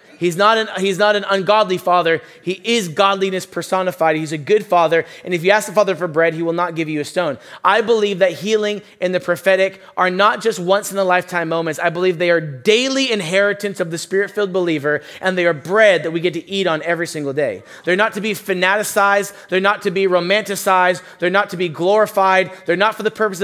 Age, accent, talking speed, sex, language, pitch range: 30-49, American, 230 wpm, male, English, 175-205 Hz